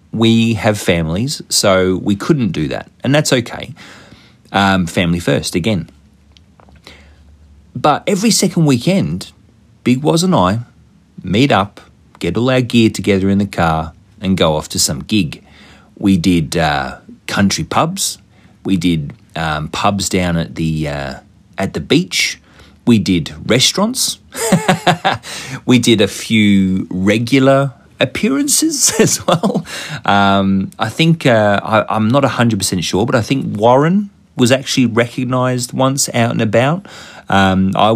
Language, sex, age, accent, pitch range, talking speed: English, male, 40-59, Australian, 95-130 Hz, 140 wpm